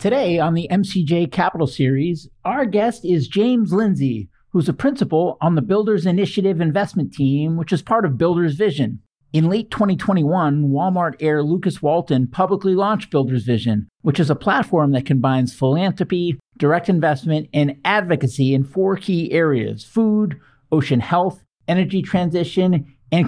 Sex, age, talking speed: male, 50-69, 150 wpm